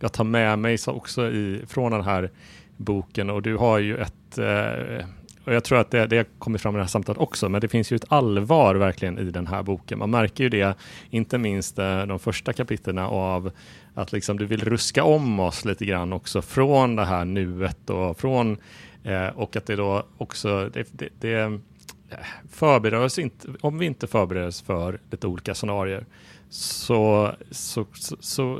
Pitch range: 95-115 Hz